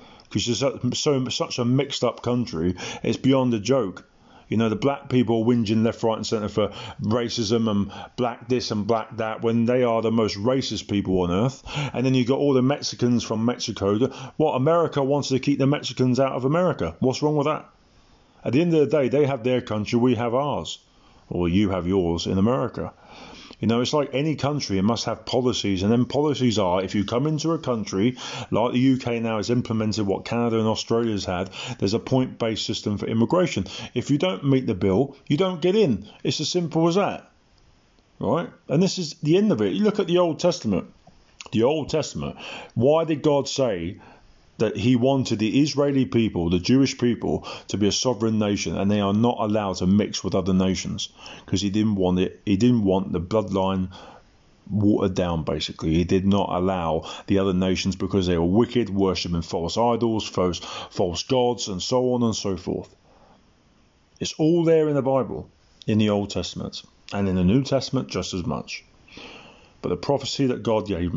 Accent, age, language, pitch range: British, 30-49, English, 100-135 Hz